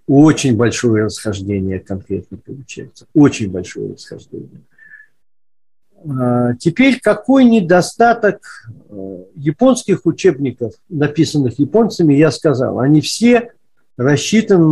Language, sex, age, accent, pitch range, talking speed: Russian, male, 50-69, native, 120-170 Hz, 85 wpm